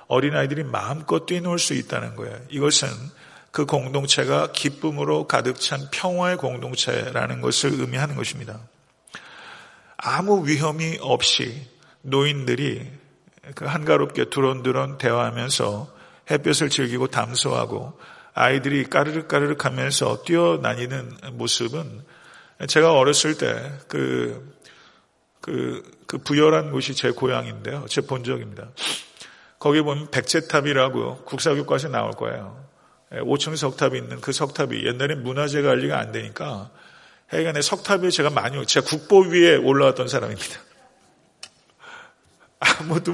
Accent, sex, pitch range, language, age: native, male, 130-160 Hz, Korean, 40-59